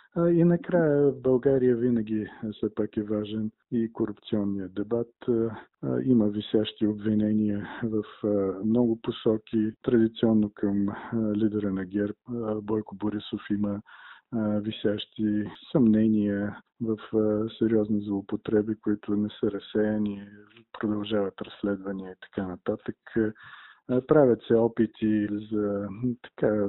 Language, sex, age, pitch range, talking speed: Bulgarian, male, 50-69, 100-115 Hz, 100 wpm